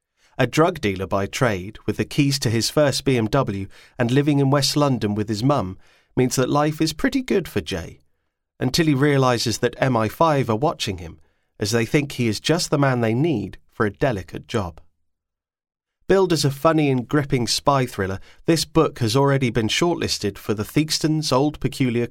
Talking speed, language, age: 185 wpm, English, 30-49